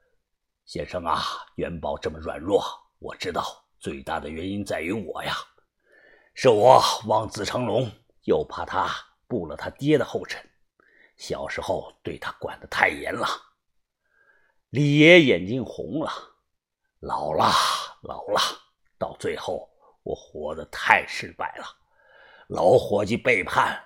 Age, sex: 50-69, male